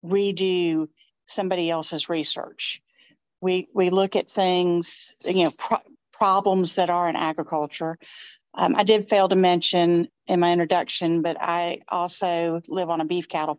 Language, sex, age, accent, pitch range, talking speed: English, female, 50-69, American, 165-195 Hz, 145 wpm